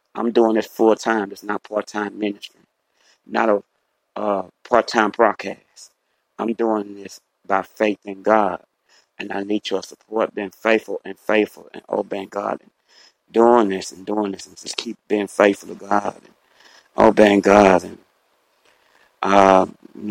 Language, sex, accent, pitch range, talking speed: English, male, American, 100-110 Hz, 145 wpm